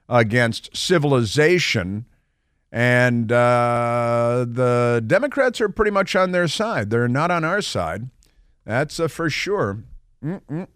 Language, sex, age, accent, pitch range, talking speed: English, male, 50-69, American, 110-145 Hz, 125 wpm